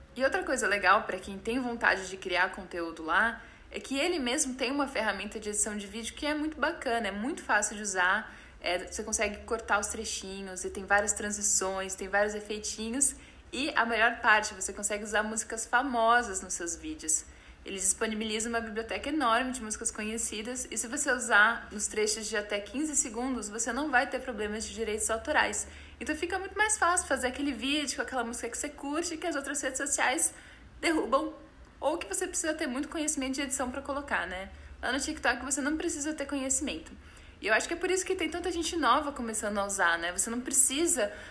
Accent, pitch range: Brazilian, 215-285 Hz